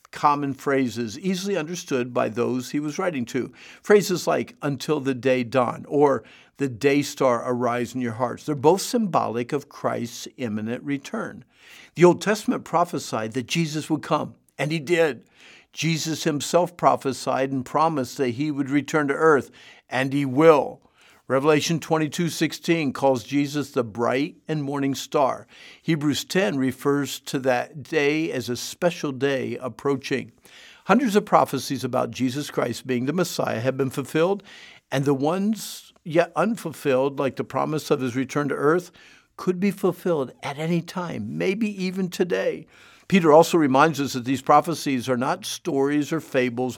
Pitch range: 130-165 Hz